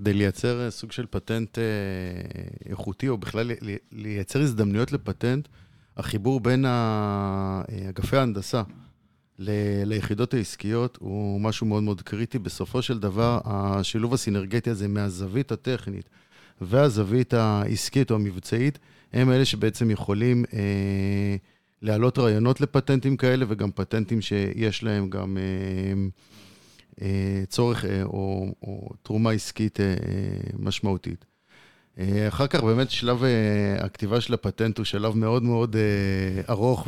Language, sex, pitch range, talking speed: Hebrew, male, 100-120 Hz, 110 wpm